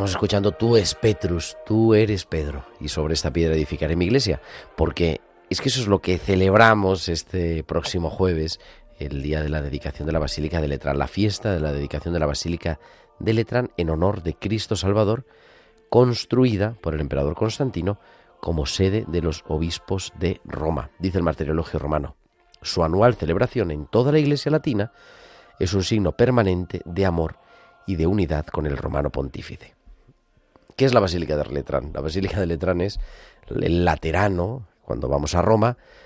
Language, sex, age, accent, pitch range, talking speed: Spanish, male, 40-59, Spanish, 75-100 Hz, 175 wpm